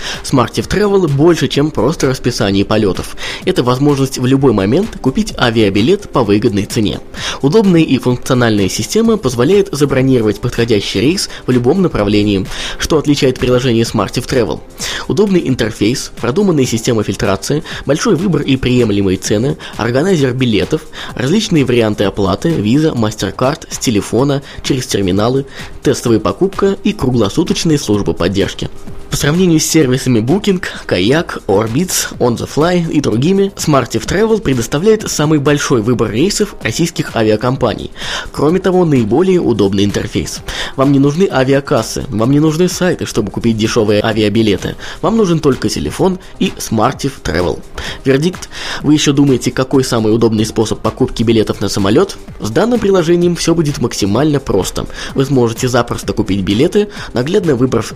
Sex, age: male, 20-39